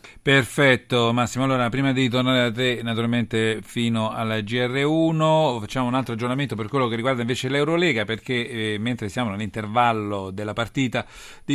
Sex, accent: male, native